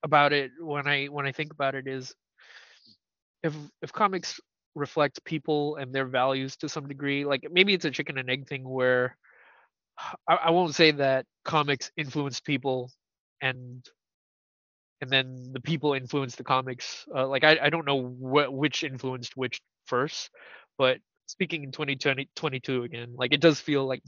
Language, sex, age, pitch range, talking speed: English, male, 20-39, 125-145 Hz, 175 wpm